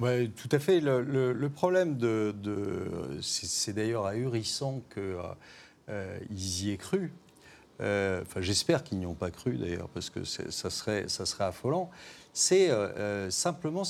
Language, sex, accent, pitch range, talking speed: French, male, French, 110-160 Hz, 170 wpm